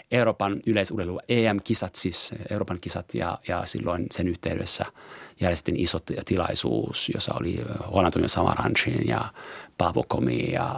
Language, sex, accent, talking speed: Finnish, male, native, 130 wpm